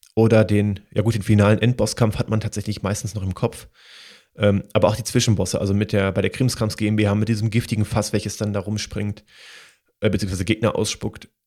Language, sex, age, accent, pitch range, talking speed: German, male, 30-49, German, 105-120 Hz, 200 wpm